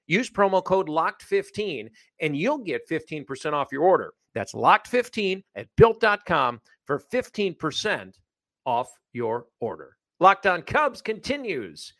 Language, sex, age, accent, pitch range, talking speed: English, male, 50-69, American, 150-210 Hz, 150 wpm